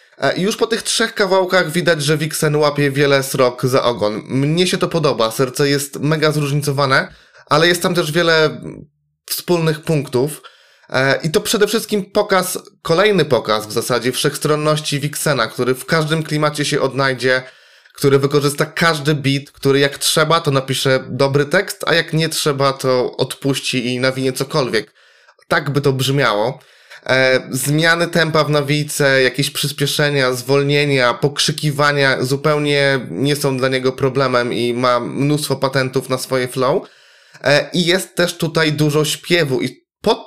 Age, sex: 20-39, male